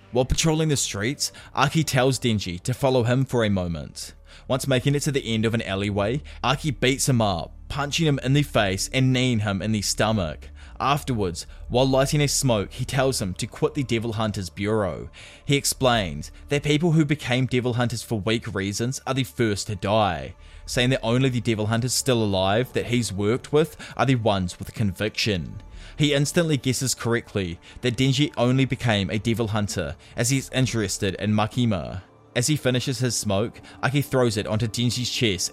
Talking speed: 185 wpm